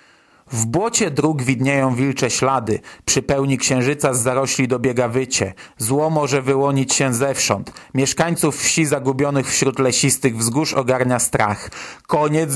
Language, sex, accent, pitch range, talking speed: Polish, male, native, 125-155 Hz, 130 wpm